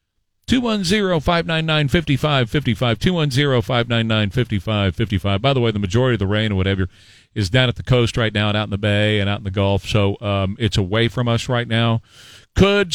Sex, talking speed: male, 260 wpm